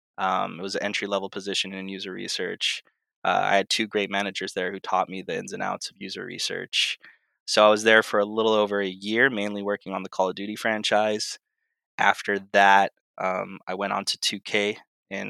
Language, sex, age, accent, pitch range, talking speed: Danish, male, 20-39, American, 95-105 Hz, 210 wpm